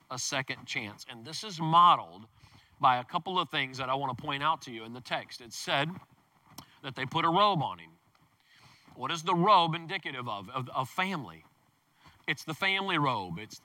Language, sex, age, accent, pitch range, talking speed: English, male, 40-59, American, 150-200 Hz, 200 wpm